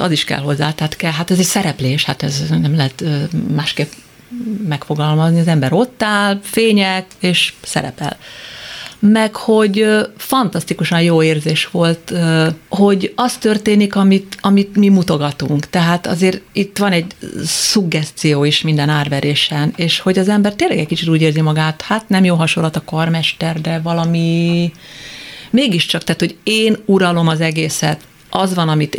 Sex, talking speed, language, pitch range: female, 150 wpm, Hungarian, 155-190 Hz